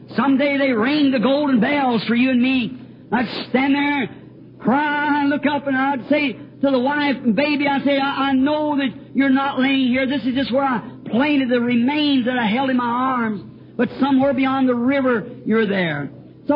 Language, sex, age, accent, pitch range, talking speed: English, male, 50-69, American, 225-280 Hz, 220 wpm